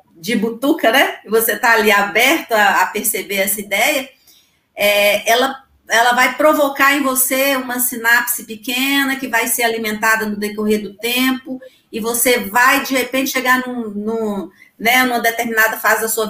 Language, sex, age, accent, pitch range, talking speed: Portuguese, female, 40-59, Brazilian, 210-260 Hz, 165 wpm